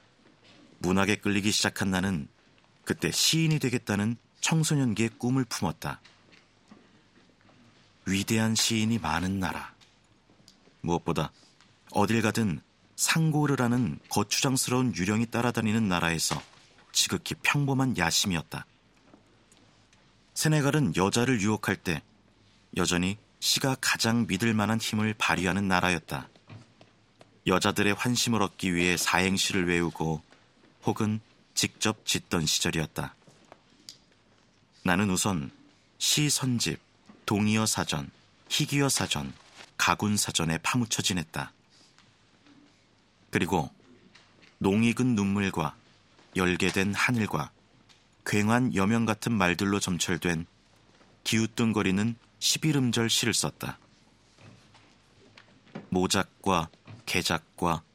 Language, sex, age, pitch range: Korean, male, 40-59, 90-120 Hz